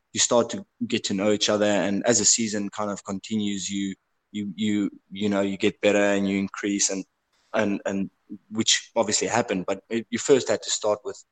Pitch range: 100-110 Hz